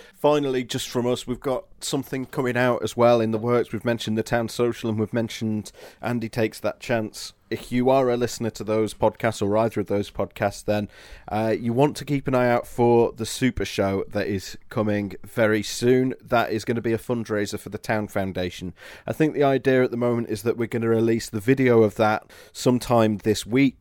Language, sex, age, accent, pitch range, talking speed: English, male, 30-49, British, 100-120 Hz, 220 wpm